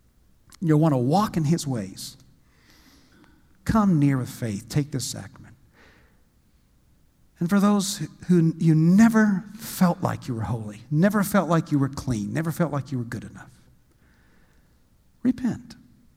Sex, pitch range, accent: male, 125-160 Hz, American